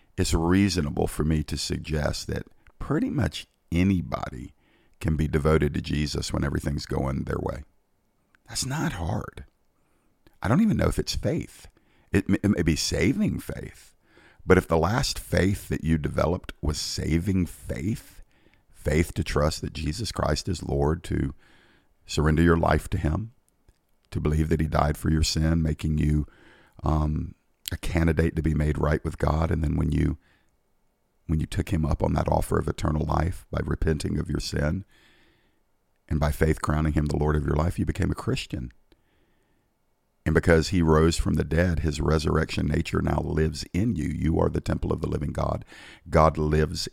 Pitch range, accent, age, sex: 75-90 Hz, American, 50-69, male